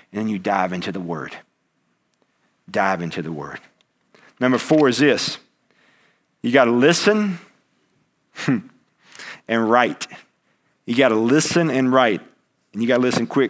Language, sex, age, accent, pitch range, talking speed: English, male, 50-69, American, 125-195 Hz, 145 wpm